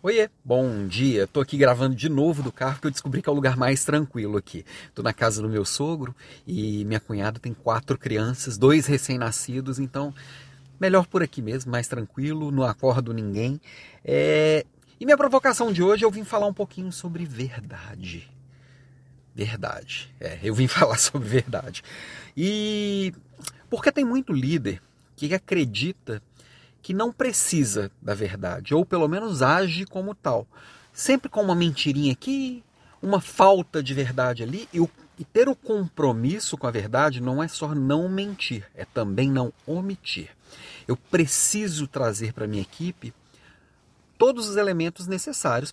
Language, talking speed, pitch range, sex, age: Portuguese, 155 wpm, 120-180 Hz, male, 40-59